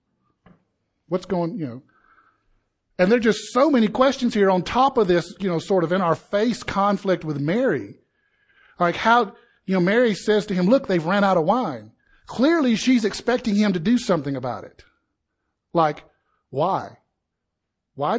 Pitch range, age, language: 155-210 Hz, 50-69, English